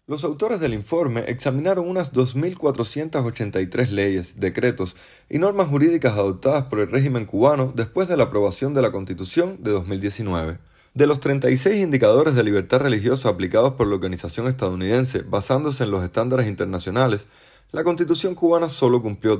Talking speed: 150 wpm